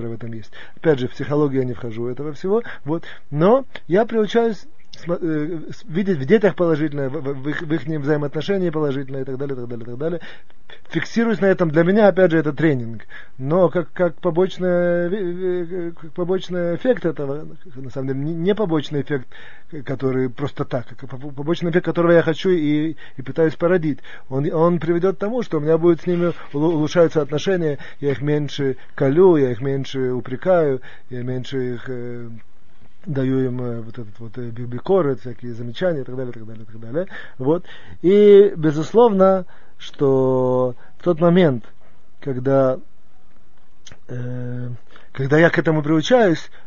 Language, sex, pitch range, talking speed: Russian, male, 130-175 Hz, 160 wpm